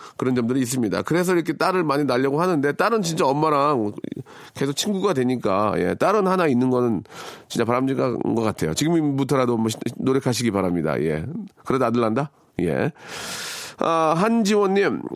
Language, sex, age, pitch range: Korean, male, 40-59, 115-170 Hz